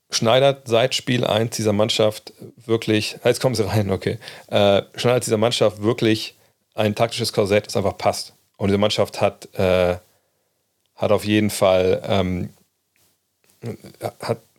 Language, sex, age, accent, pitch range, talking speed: German, male, 40-59, German, 100-110 Hz, 140 wpm